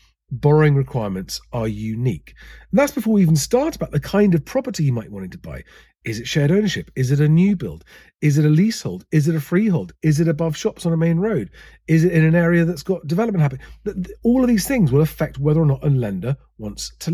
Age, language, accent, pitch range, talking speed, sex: 40-59, English, British, 125-190 Hz, 235 wpm, male